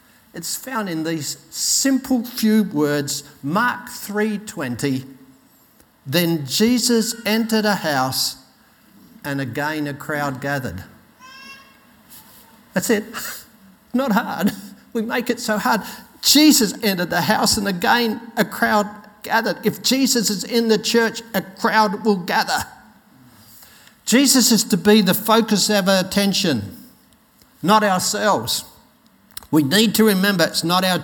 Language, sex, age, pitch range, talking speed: English, male, 60-79, 140-220 Hz, 125 wpm